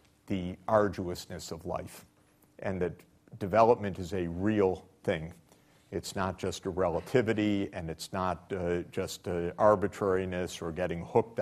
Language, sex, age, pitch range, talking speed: English, male, 50-69, 85-105 Hz, 135 wpm